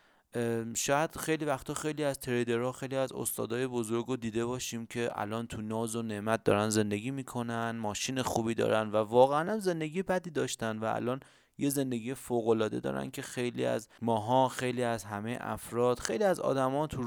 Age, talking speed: 30-49, 175 wpm